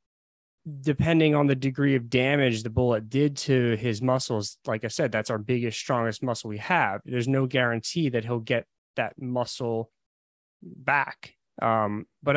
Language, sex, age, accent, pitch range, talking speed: English, male, 20-39, American, 115-135 Hz, 160 wpm